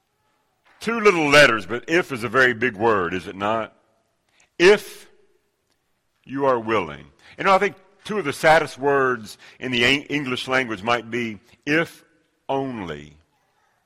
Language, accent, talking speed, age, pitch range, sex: English, American, 150 wpm, 60-79, 125-180 Hz, male